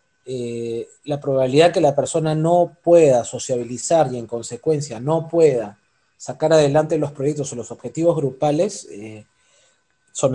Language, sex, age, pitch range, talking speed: Spanish, male, 20-39, 130-165 Hz, 140 wpm